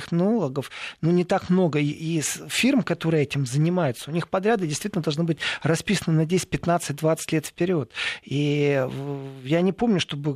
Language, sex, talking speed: Russian, male, 160 wpm